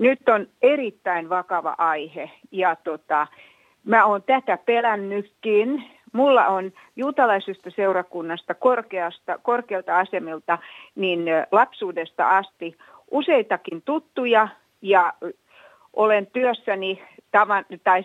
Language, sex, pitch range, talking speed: Finnish, female, 185-250 Hz, 85 wpm